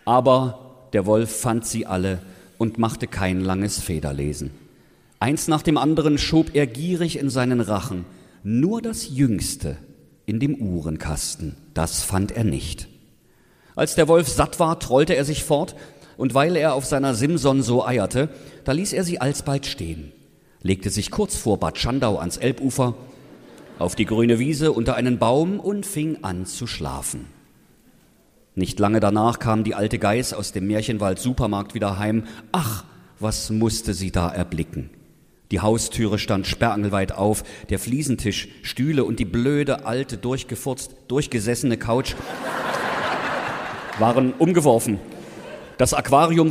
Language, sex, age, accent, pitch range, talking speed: German, male, 50-69, German, 105-140 Hz, 145 wpm